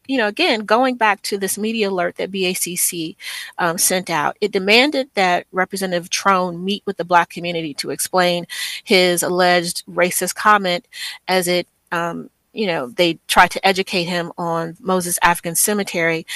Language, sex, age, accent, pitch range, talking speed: English, female, 40-59, American, 175-215 Hz, 160 wpm